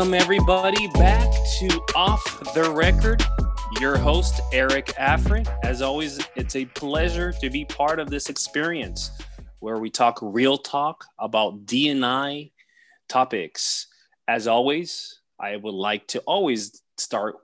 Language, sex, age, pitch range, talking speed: English, male, 20-39, 115-150 Hz, 130 wpm